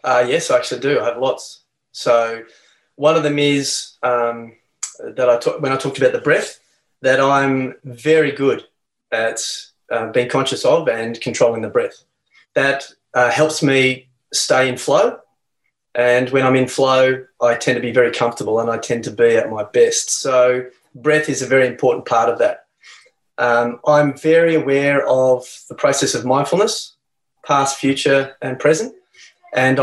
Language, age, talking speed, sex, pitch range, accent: English, 20-39, 165 wpm, male, 125-150 Hz, Australian